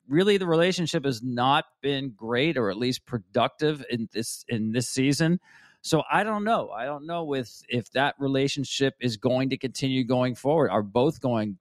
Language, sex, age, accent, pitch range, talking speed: English, male, 40-59, American, 110-135 Hz, 190 wpm